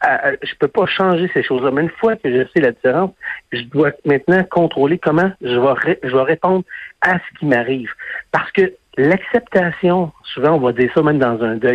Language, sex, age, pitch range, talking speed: French, male, 60-79, 130-180 Hz, 220 wpm